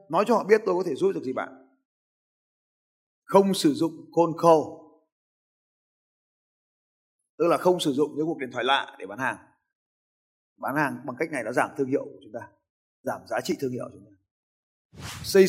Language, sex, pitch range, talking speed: Vietnamese, male, 125-205 Hz, 190 wpm